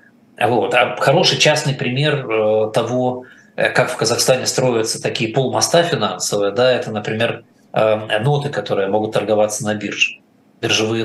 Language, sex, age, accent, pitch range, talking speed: Russian, male, 20-39, native, 115-145 Hz, 150 wpm